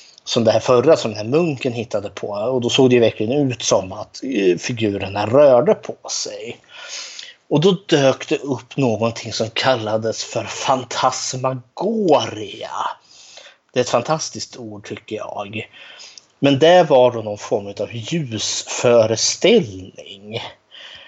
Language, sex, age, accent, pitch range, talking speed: Swedish, male, 30-49, native, 110-135 Hz, 135 wpm